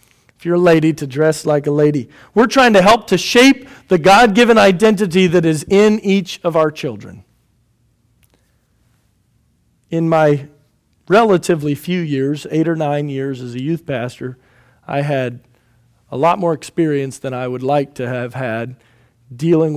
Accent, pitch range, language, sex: American, 120-150 Hz, English, male